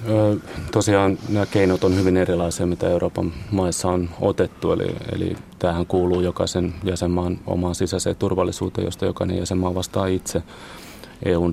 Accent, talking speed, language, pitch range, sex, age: native, 135 wpm, Finnish, 90-95 Hz, male, 30-49